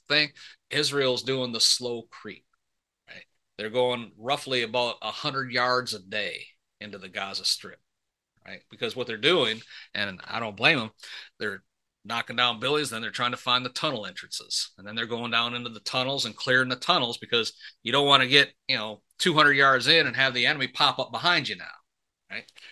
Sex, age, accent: male, 40-59, American